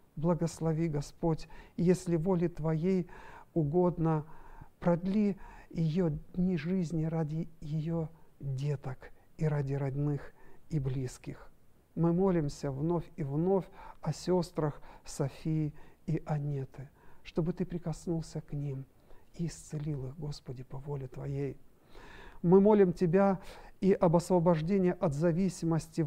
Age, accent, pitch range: 50-69, native, 145-175 Hz